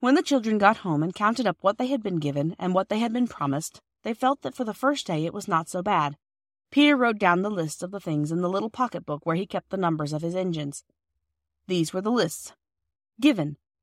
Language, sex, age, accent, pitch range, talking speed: English, female, 30-49, American, 150-220 Hz, 245 wpm